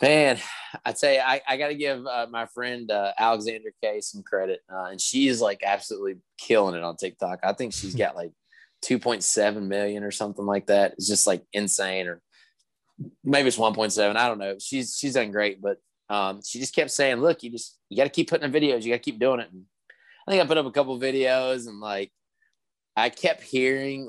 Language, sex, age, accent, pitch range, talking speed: English, male, 20-39, American, 105-135 Hz, 220 wpm